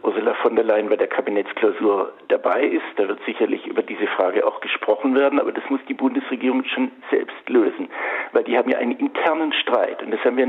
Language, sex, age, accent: German, male, 60-79, German